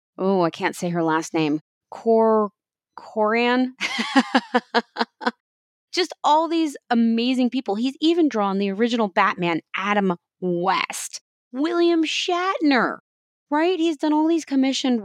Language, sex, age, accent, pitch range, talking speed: English, female, 20-39, American, 180-265 Hz, 120 wpm